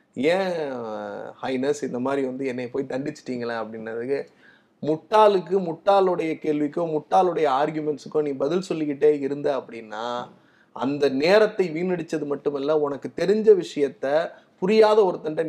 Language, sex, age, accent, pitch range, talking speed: Tamil, male, 30-49, native, 145-195 Hz, 110 wpm